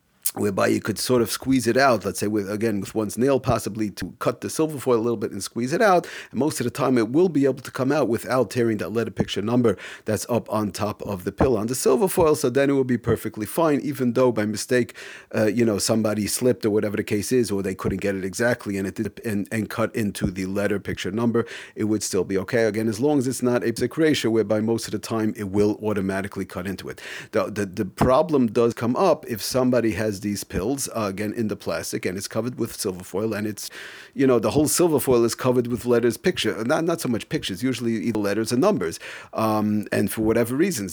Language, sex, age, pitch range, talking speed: English, male, 40-59, 105-125 Hz, 250 wpm